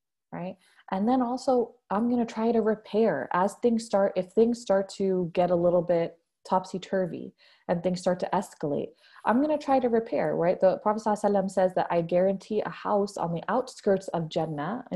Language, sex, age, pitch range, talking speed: English, female, 20-39, 170-215 Hz, 195 wpm